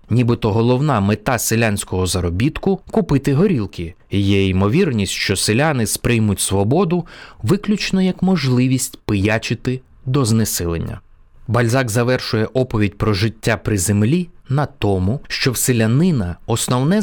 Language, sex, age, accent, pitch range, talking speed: Ukrainian, male, 20-39, native, 100-145 Hz, 115 wpm